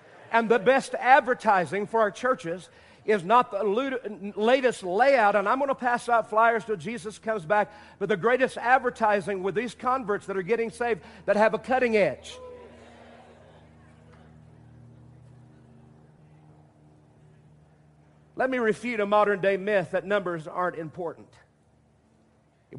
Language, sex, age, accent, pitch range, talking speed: English, male, 50-69, American, 165-225 Hz, 135 wpm